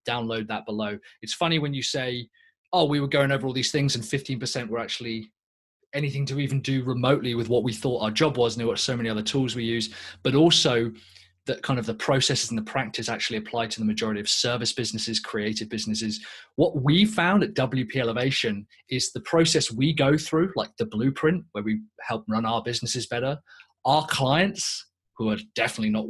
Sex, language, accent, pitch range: male, English, British, 115-155 Hz